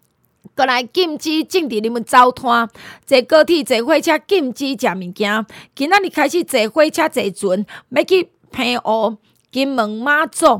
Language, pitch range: Chinese, 225-320 Hz